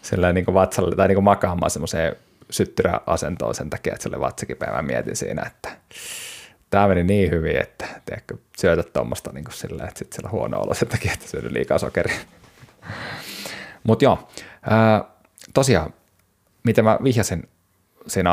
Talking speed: 145 wpm